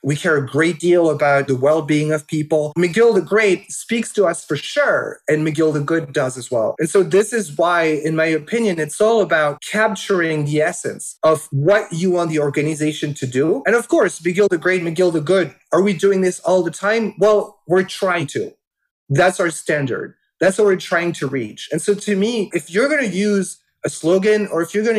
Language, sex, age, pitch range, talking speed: English, male, 30-49, 160-210 Hz, 220 wpm